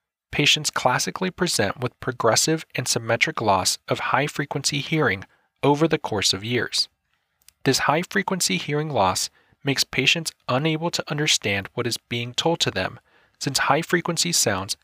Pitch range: 115-155 Hz